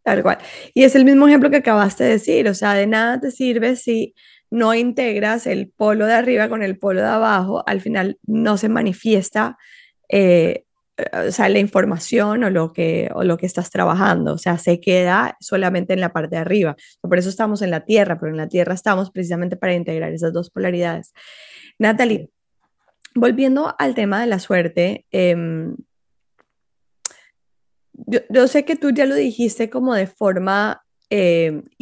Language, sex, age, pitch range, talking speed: Spanish, female, 20-39, 180-230 Hz, 175 wpm